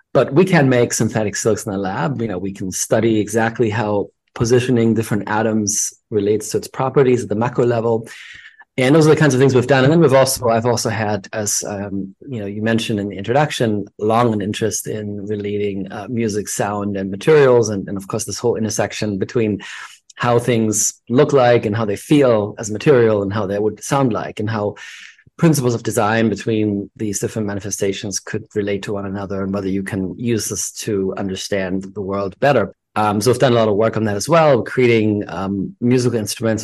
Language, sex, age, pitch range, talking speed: English, male, 30-49, 100-120 Hz, 210 wpm